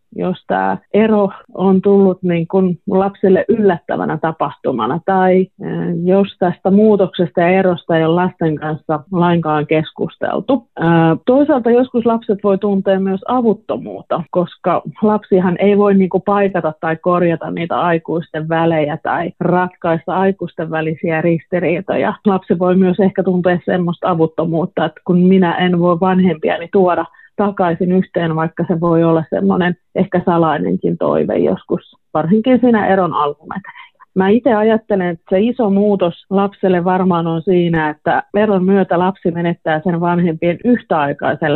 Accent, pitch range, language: native, 165-195 Hz, Finnish